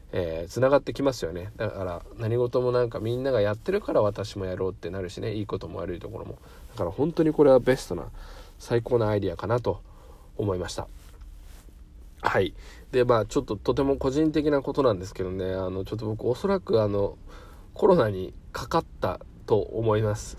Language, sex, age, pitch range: Japanese, male, 20-39, 95-130 Hz